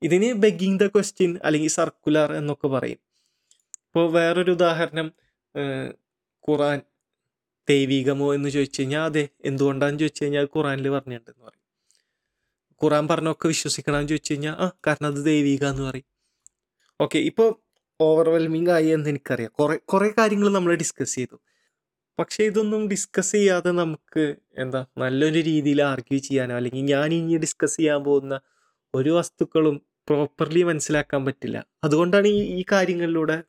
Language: Malayalam